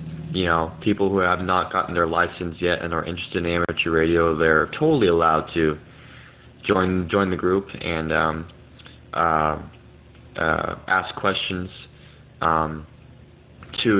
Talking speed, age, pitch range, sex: 135 wpm, 20-39, 85-100 Hz, male